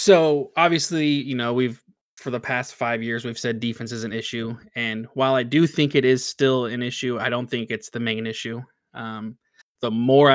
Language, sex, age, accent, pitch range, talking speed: English, male, 20-39, American, 115-135 Hz, 210 wpm